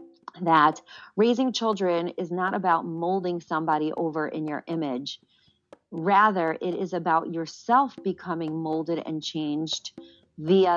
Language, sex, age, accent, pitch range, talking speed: English, female, 40-59, American, 155-185 Hz, 125 wpm